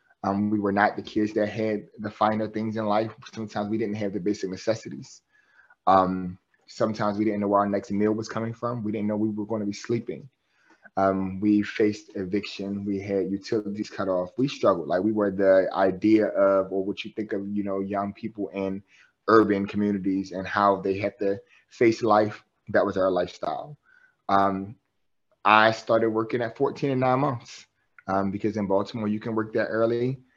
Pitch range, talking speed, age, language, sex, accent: 100-115 Hz, 195 wpm, 20-39, English, male, American